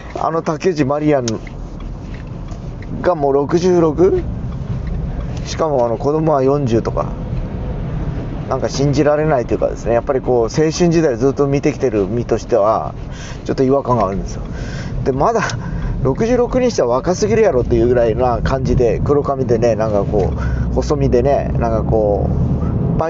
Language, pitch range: Japanese, 115-150 Hz